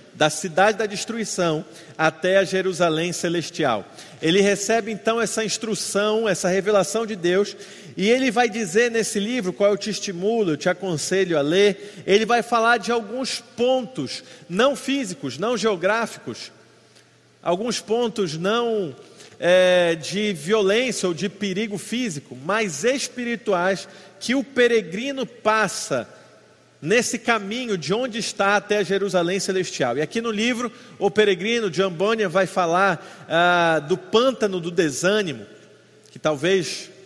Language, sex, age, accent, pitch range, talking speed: Portuguese, male, 40-59, Brazilian, 180-220 Hz, 135 wpm